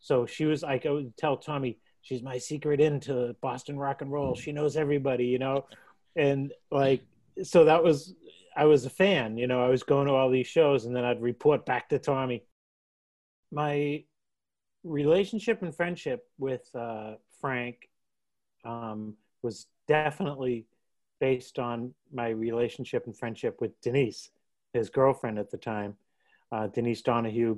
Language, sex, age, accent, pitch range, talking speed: English, male, 30-49, American, 120-150 Hz, 155 wpm